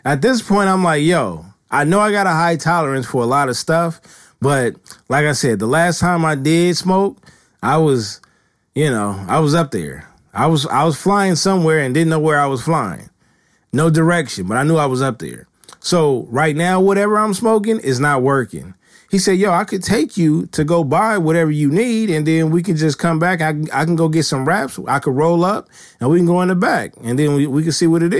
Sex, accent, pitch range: male, American, 140-175 Hz